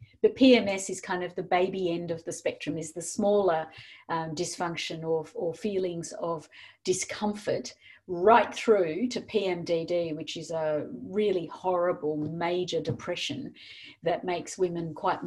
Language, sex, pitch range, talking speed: English, female, 170-230 Hz, 140 wpm